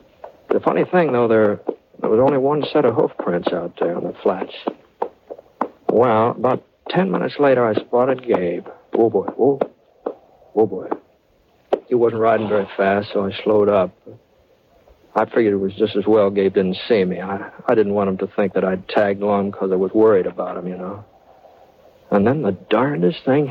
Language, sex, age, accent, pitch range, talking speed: English, male, 60-79, American, 100-145 Hz, 190 wpm